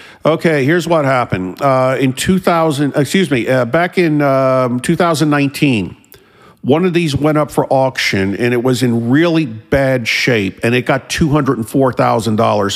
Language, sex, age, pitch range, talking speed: English, male, 50-69, 115-150 Hz, 150 wpm